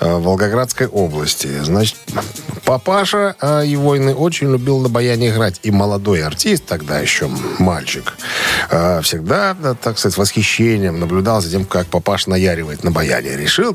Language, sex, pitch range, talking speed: Russian, male, 95-125 Hz, 135 wpm